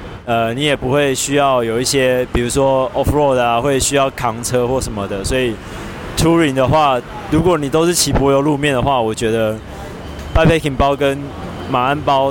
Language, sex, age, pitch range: Chinese, male, 20-39, 115-140 Hz